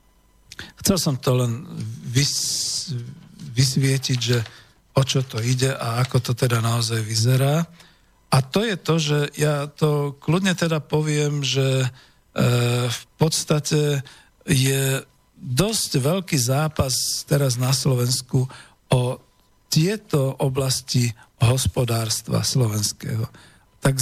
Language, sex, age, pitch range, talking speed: Slovak, male, 50-69, 120-150 Hz, 110 wpm